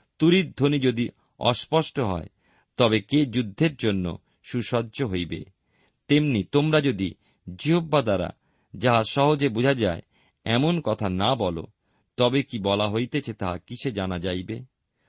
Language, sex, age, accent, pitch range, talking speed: Bengali, male, 50-69, native, 95-140 Hz, 90 wpm